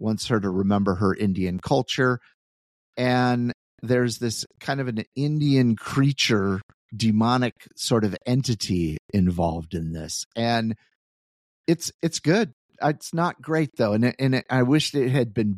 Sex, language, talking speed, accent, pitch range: male, English, 150 wpm, American, 105-135 Hz